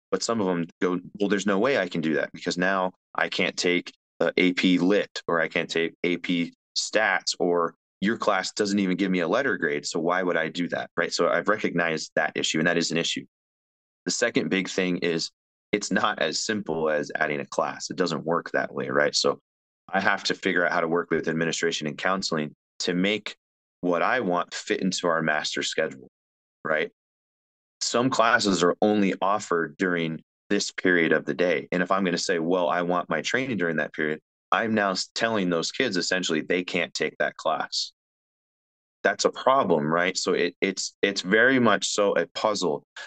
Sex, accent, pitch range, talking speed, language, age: male, American, 80-90 Hz, 200 wpm, English, 30-49